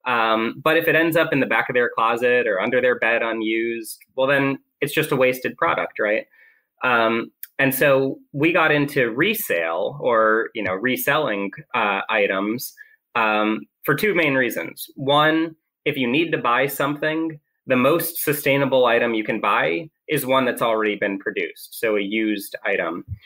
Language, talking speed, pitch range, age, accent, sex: English, 175 wpm, 115-155 Hz, 20-39, American, male